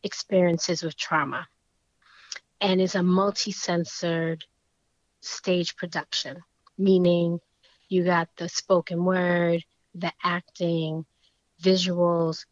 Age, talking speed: 30-49, 85 wpm